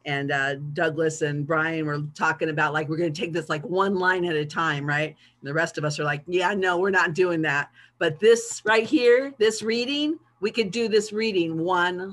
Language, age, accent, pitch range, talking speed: English, 50-69, American, 150-200 Hz, 225 wpm